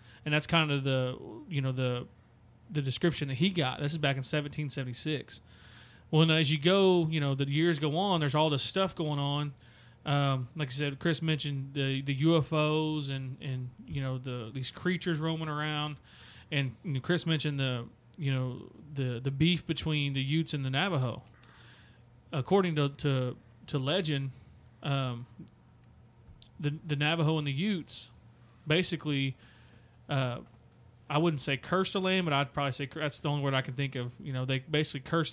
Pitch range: 130-155 Hz